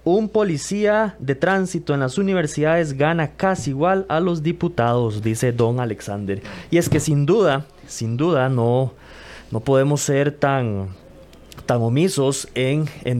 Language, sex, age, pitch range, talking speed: Spanish, male, 20-39, 115-160 Hz, 145 wpm